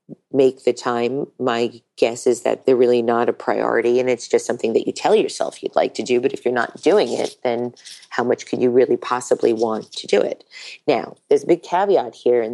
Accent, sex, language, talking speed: American, female, English, 230 wpm